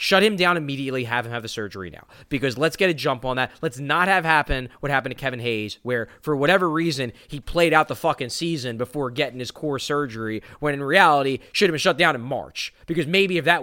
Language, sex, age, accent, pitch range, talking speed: English, male, 20-39, American, 115-155 Hz, 240 wpm